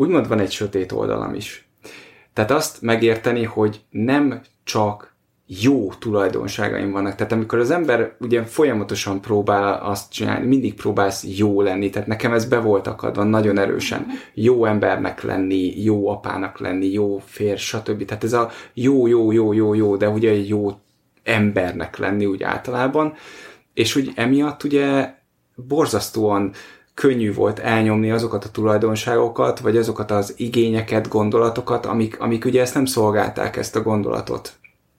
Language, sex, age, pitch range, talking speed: Hungarian, male, 20-39, 100-120 Hz, 140 wpm